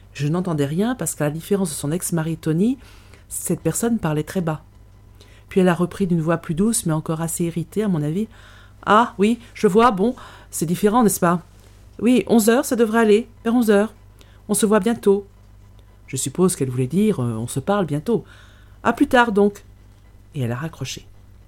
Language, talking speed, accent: French, 195 wpm, French